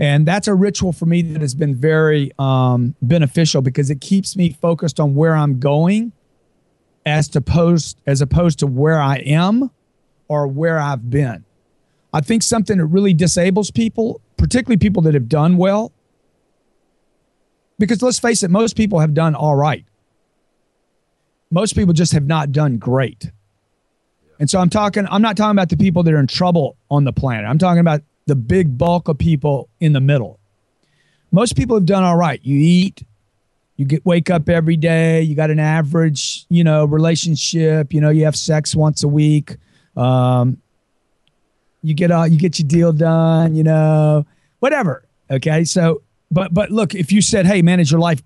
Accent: American